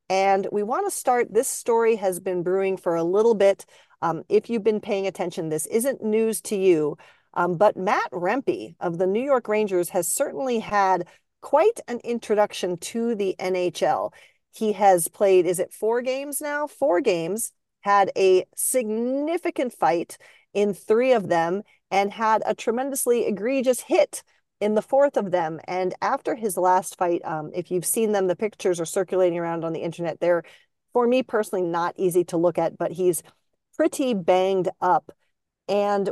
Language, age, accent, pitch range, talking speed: English, 40-59, American, 175-230 Hz, 175 wpm